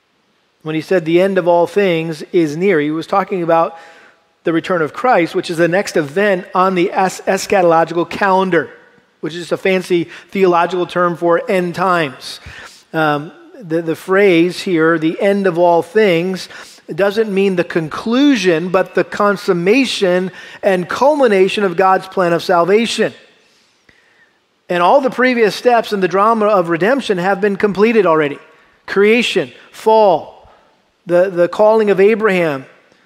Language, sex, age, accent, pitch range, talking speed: English, male, 40-59, American, 170-205 Hz, 150 wpm